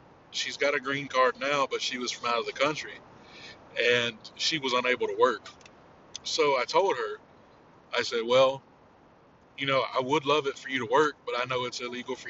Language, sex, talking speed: English, male, 210 wpm